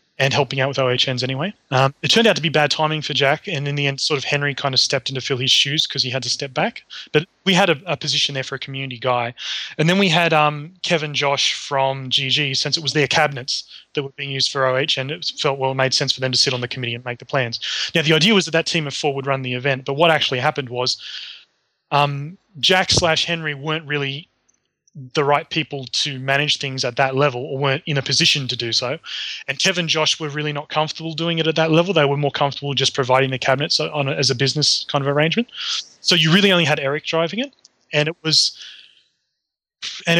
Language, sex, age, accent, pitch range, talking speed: English, male, 20-39, Australian, 135-165 Hz, 250 wpm